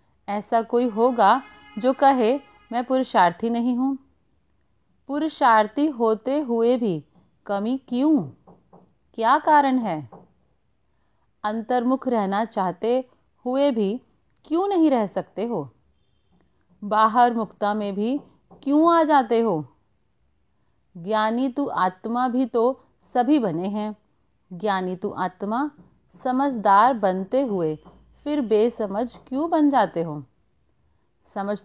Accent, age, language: native, 40-59, Hindi